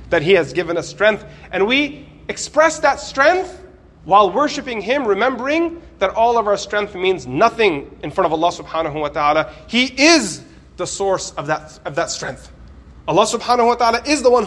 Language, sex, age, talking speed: English, male, 30-49, 185 wpm